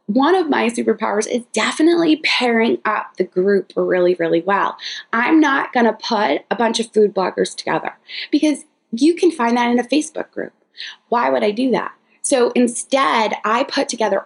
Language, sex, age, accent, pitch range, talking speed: English, female, 20-39, American, 215-295 Hz, 180 wpm